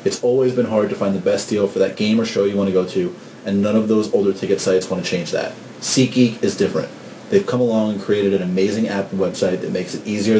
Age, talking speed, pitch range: 30-49, 270 wpm, 100-125 Hz